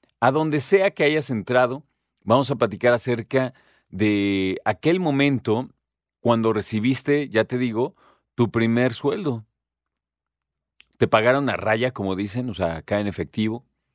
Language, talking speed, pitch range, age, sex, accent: Spanish, 140 wpm, 100-130 Hz, 40-59, male, Mexican